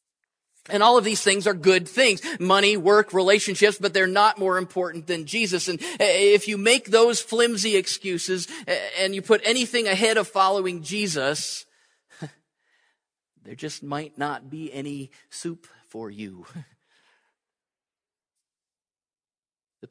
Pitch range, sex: 175-210 Hz, male